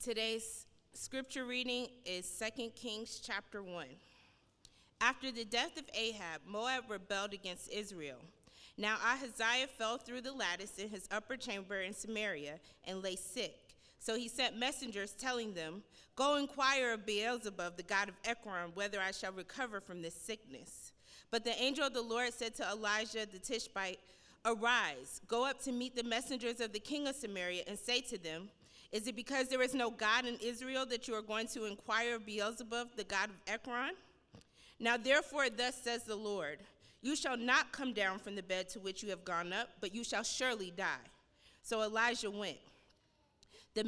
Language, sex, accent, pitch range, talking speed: English, female, American, 205-255 Hz, 180 wpm